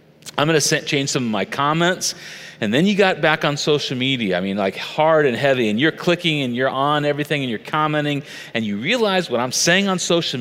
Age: 40-59